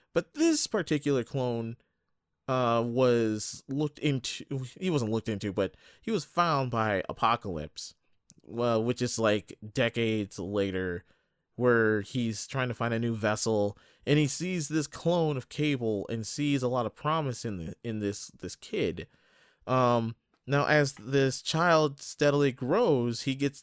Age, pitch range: 20-39, 110-145 Hz